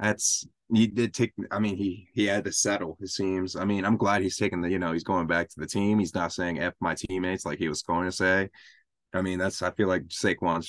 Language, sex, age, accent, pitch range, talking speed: English, male, 20-39, American, 95-125 Hz, 265 wpm